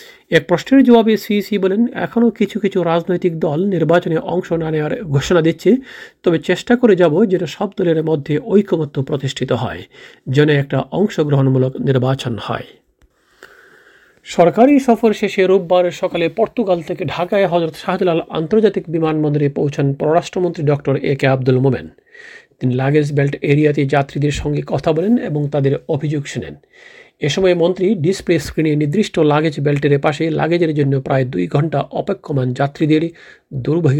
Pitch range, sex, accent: 145-190 Hz, male, native